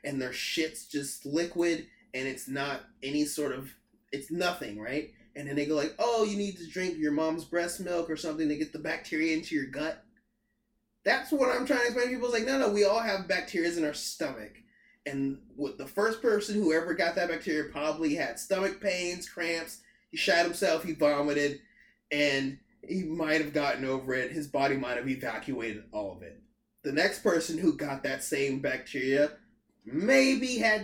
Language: English